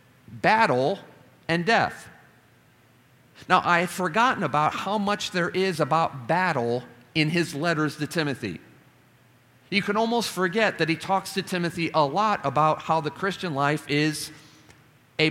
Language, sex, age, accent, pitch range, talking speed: English, male, 40-59, American, 130-180 Hz, 145 wpm